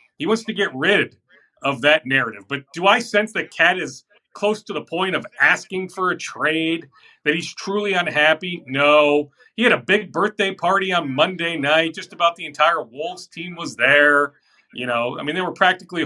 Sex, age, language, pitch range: male, 40-59, English, 145-205 Hz